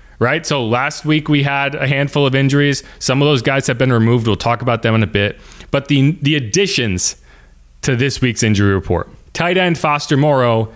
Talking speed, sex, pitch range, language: 205 wpm, male, 115-150 Hz, English